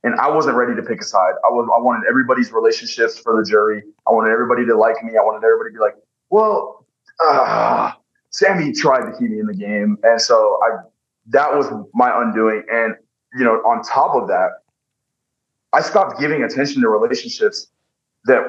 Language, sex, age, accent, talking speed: English, male, 20-39, American, 195 wpm